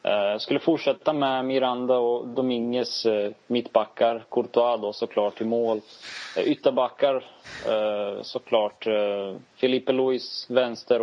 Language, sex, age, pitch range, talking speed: Swedish, male, 20-39, 110-130 Hz, 100 wpm